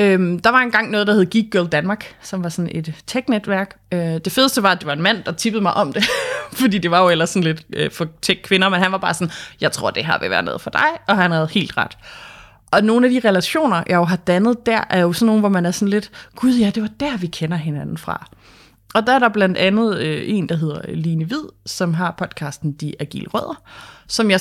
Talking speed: 250 wpm